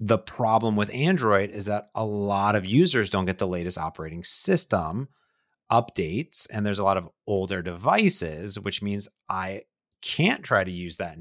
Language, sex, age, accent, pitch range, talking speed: English, male, 30-49, American, 95-135 Hz, 170 wpm